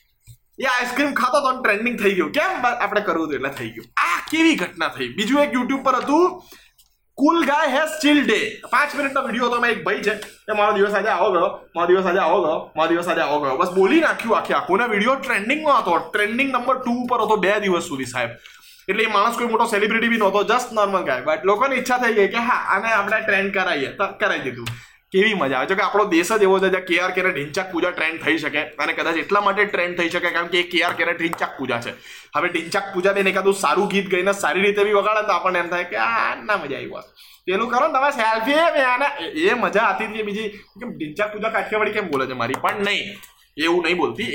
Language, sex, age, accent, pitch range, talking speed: Gujarati, male, 20-39, native, 180-245 Hz, 140 wpm